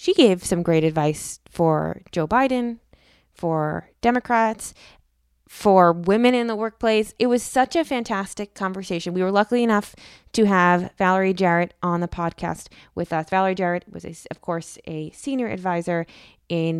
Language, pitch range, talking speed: English, 165-200 Hz, 155 wpm